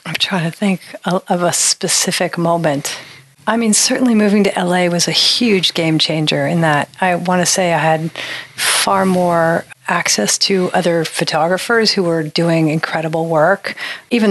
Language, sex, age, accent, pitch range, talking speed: English, female, 40-59, American, 160-190 Hz, 165 wpm